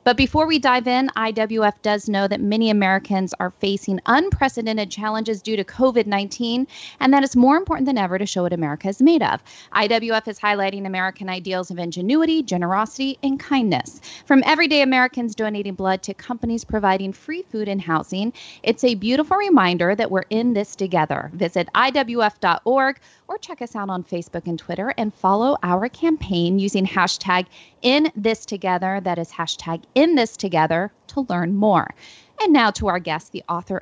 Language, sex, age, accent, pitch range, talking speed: English, female, 40-59, American, 190-245 Hz, 175 wpm